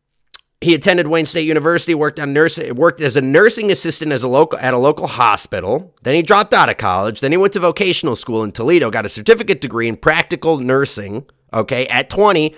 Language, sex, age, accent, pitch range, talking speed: English, male, 30-49, American, 115-175 Hz, 210 wpm